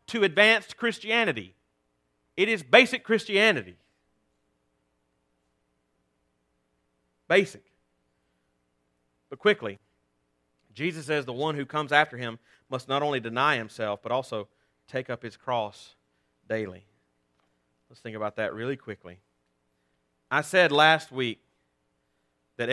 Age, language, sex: 40-59, English, male